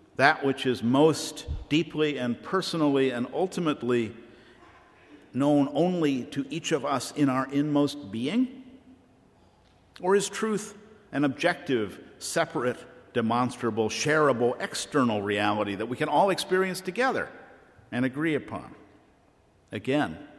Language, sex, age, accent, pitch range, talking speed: English, male, 50-69, American, 120-175 Hz, 115 wpm